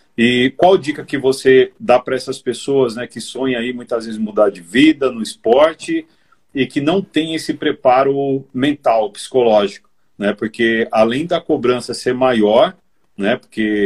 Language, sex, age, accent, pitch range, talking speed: Portuguese, male, 40-59, Brazilian, 120-155 Hz, 160 wpm